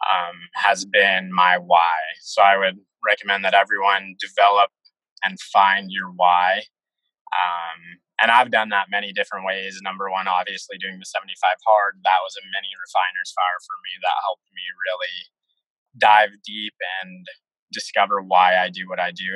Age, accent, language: 20-39, American, English